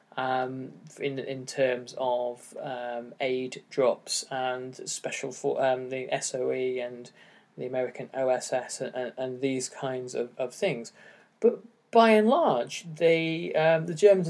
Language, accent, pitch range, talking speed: English, British, 125-165 Hz, 155 wpm